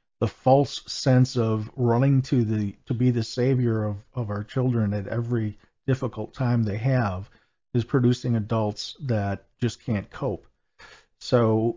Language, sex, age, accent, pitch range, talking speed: English, male, 50-69, American, 110-130 Hz, 150 wpm